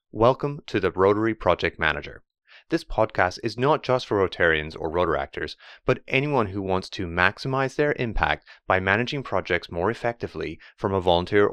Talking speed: 160 wpm